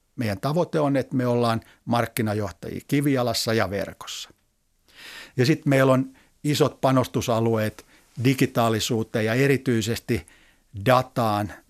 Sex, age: male, 60-79